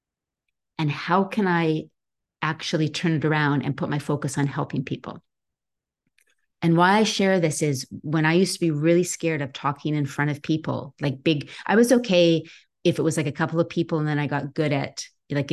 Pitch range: 145-170 Hz